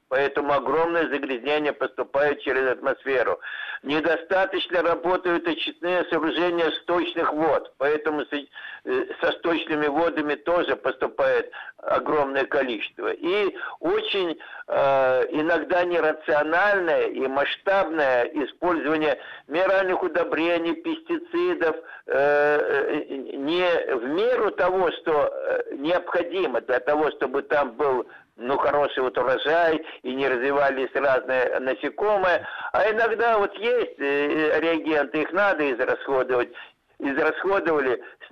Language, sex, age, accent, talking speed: Russian, male, 60-79, native, 95 wpm